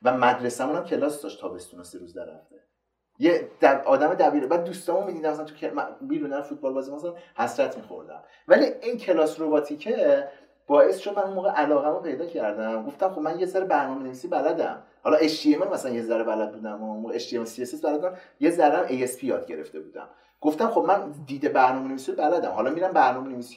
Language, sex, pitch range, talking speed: Persian, male, 120-170 Hz, 190 wpm